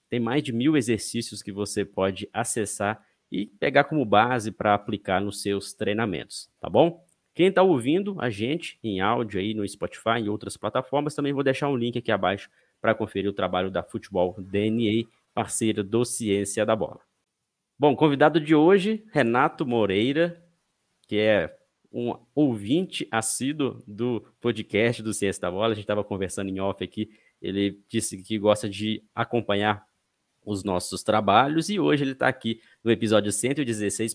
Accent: Brazilian